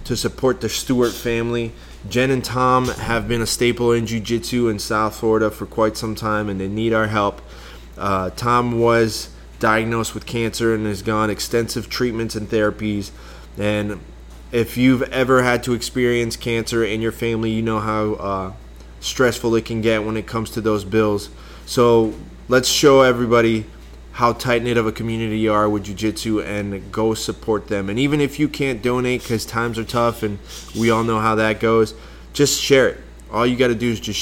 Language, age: English, 20-39